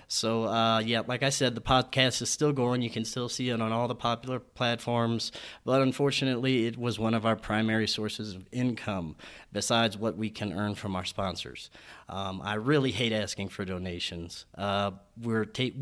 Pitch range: 105-120 Hz